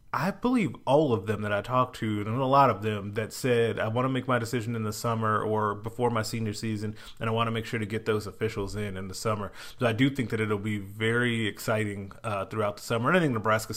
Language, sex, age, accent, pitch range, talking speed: English, male, 30-49, American, 105-115 Hz, 265 wpm